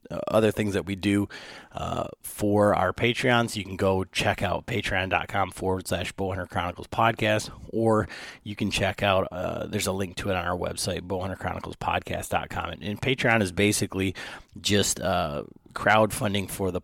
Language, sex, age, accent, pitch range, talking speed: English, male, 30-49, American, 95-105 Hz, 160 wpm